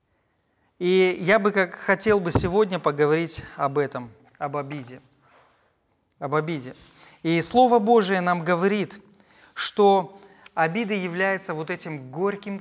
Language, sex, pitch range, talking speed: Ukrainian, male, 150-215 Hz, 120 wpm